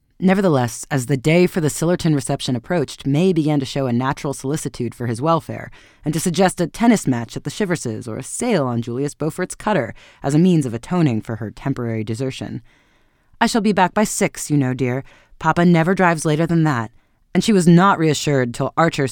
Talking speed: 205 wpm